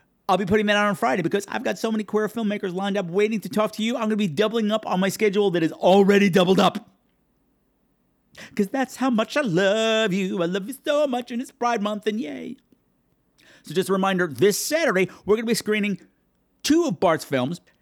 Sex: male